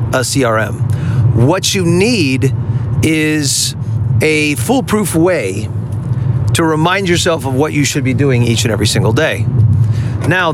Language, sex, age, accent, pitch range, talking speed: English, male, 40-59, American, 120-155 Hz, 135 wpm